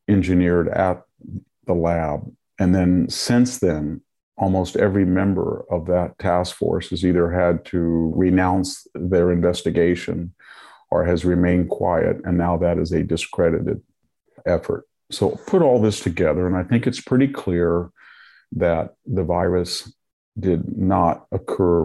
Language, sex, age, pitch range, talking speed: English, male, 50-69, 85-100 Hz, 135 wpm